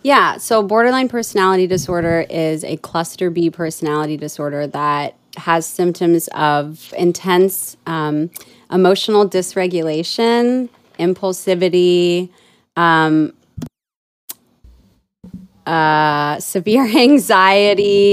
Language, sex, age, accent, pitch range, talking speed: English, female, 30-49, American, 165-205 Hz, 80 wpm